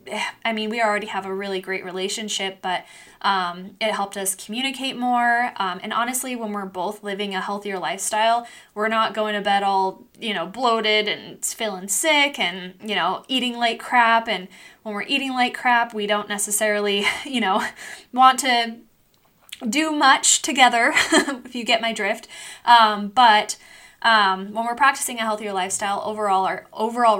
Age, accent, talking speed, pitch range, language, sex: 10-29, American, 170 wpm, 200-245 Hz, English, female